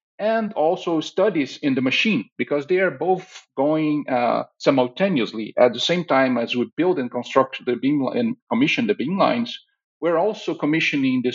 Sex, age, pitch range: male, 50-69, 125-195 Hz